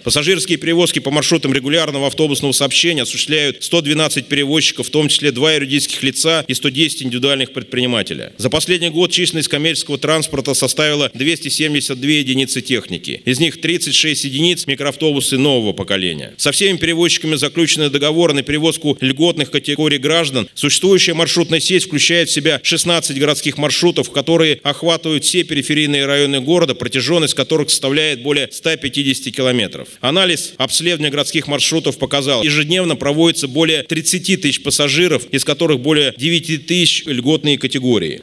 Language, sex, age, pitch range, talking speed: Russian, male, 30-49, 140-165 Hz, 135 wpm